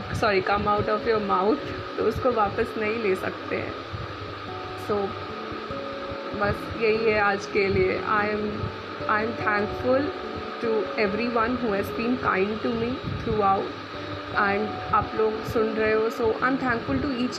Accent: native